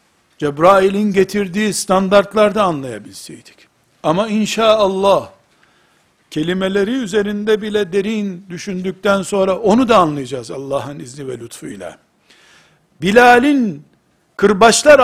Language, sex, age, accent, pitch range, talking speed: Turkish, male, 60-79, native, 175-220 Hz, 85 wpm